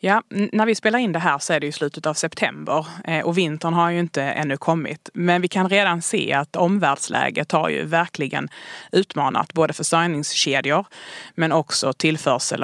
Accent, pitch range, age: native, 150-185 Hz, 30-49